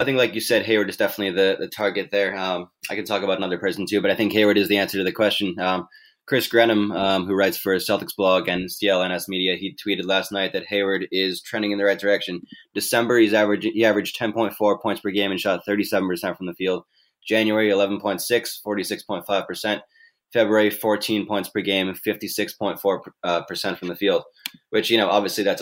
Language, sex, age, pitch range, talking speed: English, male, 20-39, 95-105 Hz, 210 wpm